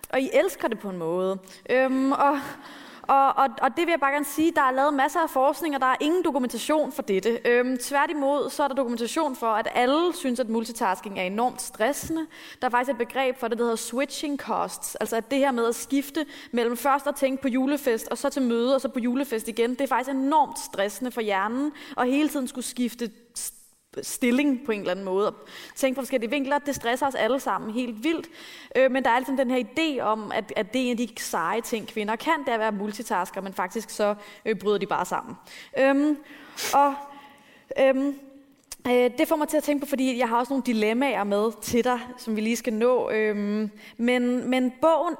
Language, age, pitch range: Danish, 20-39, 225-280 Hz